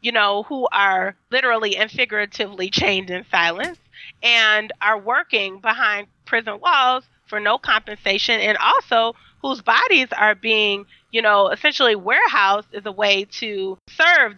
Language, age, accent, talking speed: English, 30-49, American, 140 wpm